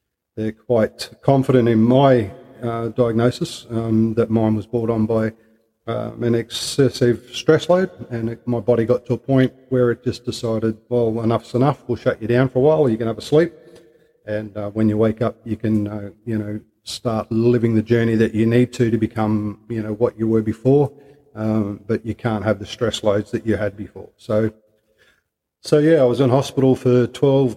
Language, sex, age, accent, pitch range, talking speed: English, male, 40-59, Australian, 110-125 Hz, 205 wpm